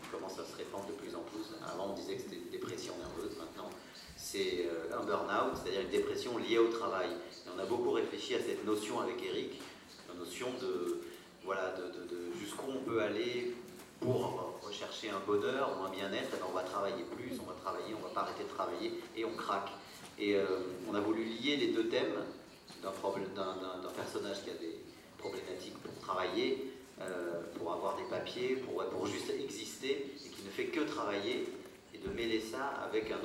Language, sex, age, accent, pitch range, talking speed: German, male, 40-59, French, 355-405 Hz, 195 wpm